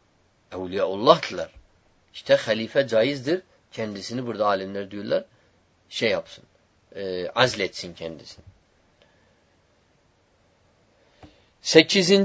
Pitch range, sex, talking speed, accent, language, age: 95-160 Hz, male, 70 wpm, native, Turkish, 50-69